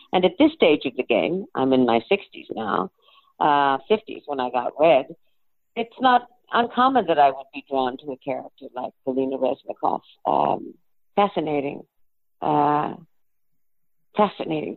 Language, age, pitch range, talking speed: English, 50-69, 145-190 Hz, 140 wpm